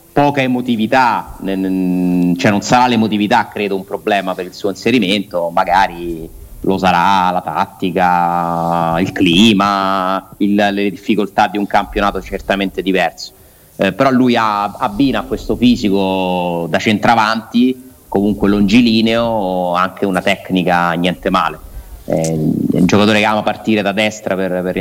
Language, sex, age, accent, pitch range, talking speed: Italian, male, 30-49, native, 95-110 Hz, 135 wpm